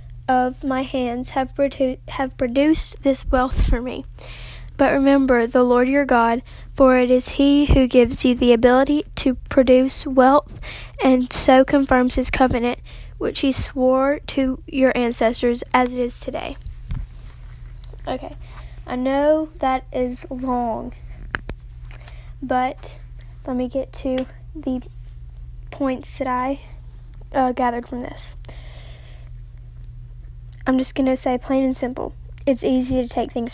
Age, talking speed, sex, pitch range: 10-29, 135 wpm, female, 240-265 Hz